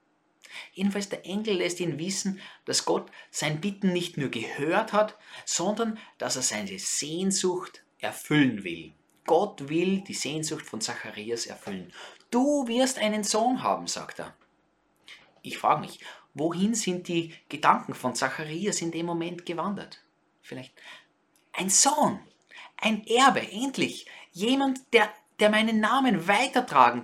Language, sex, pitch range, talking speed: German, male, 155-210 Hz, 135 wpm